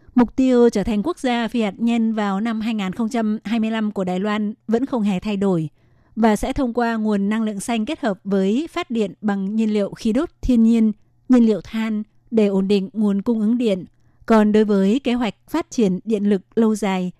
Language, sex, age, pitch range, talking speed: Vietnamese, female, 20-39, 195-230 Hz, 215 wpm